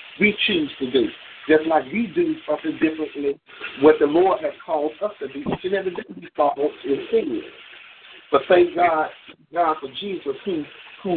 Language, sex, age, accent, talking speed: English, male, 50-69, American, 170 wpm